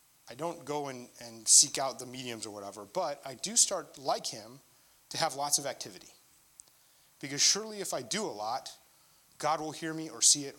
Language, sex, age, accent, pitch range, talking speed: English, male, 30-49, American, 145-210 Hz, 200 wpm